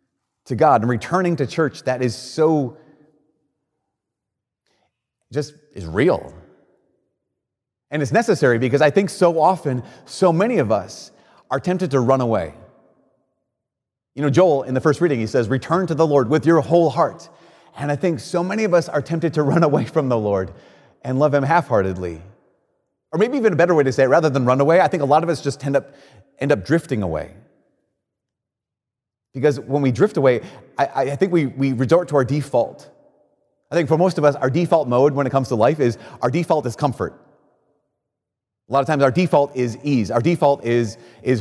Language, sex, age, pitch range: English, male, 30-49, 130-170 Hz